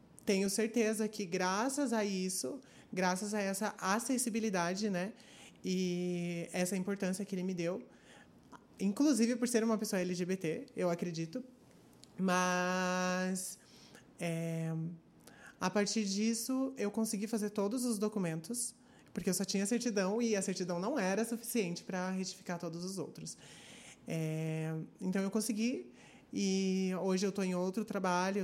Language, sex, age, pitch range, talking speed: Portuguese, male, 20-39, 175-210 Hz, 135 wpm